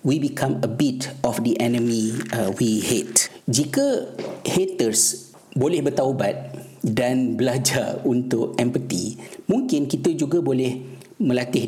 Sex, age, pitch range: male, 50-69, 115-130 Hz